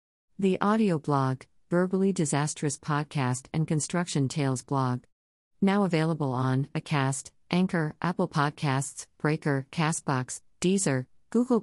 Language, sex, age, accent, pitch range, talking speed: English, female, 50-69, American, 130-185 Hz, 110 wpm